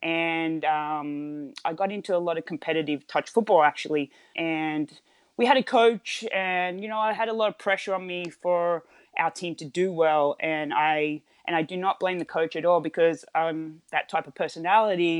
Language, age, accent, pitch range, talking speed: English, 20-39, Australian, 150-180 Hz, 200 wpm